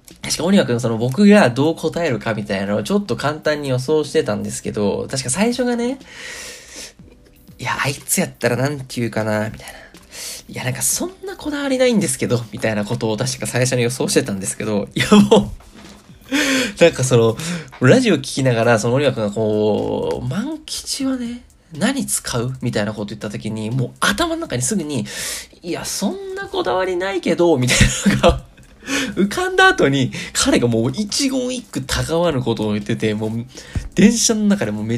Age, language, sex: 20-39, Japanese, male